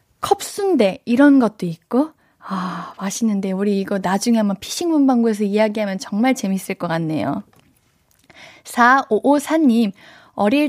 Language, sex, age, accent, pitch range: Korean, female, 20-39, native, 210-290 Hz